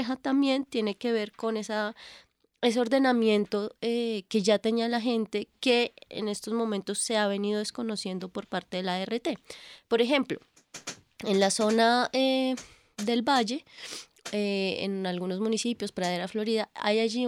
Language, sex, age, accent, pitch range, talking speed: Spanish, female, 20-39, Colombian, 195-240 Hz, 150 wpm